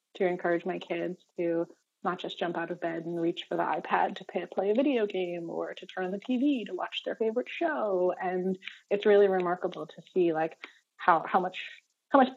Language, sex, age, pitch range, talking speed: English, female, 20-39, 180-215 Hz, 215 wpm